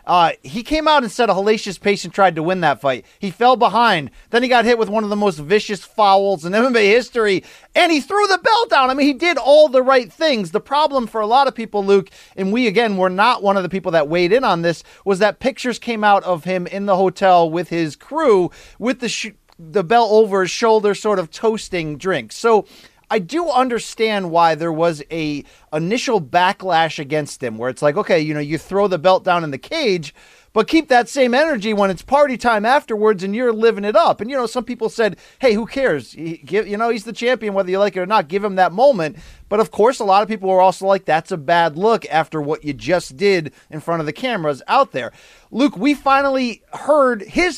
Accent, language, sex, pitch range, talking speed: American, English, male, 180-240 Hz, 235 wpm